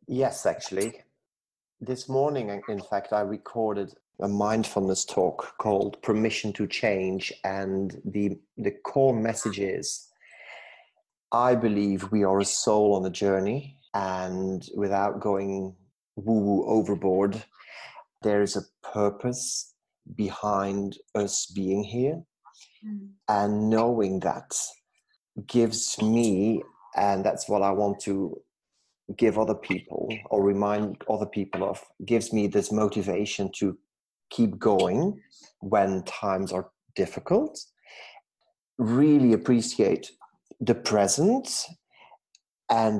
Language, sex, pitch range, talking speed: English, male, 100-115 Hz, 110 wpm